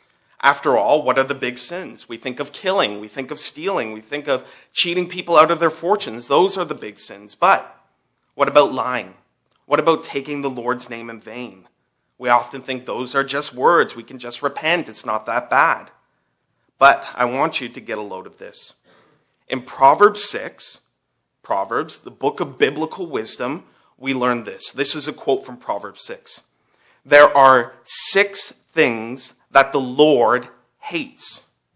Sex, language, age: male, English, 30-49